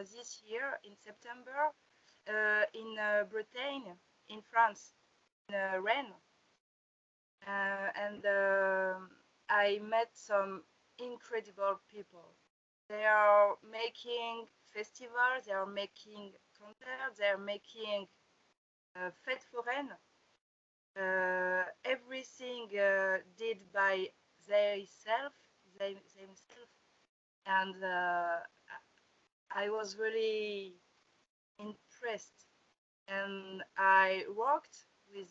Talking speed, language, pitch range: 90 wpm, English, 195-225 Hz